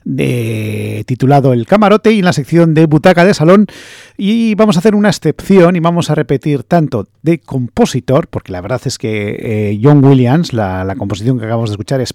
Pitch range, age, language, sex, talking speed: 120-175 Hz, 40-59, English, male, 205 wpm